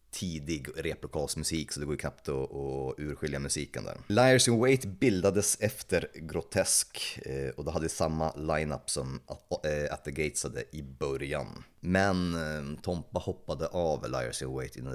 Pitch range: 75-95 Hz